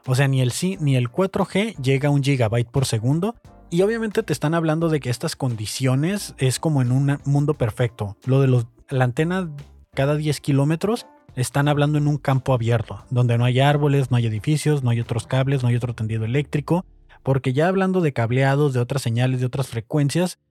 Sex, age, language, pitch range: male, 20-39, Spanish, 120-150 Hz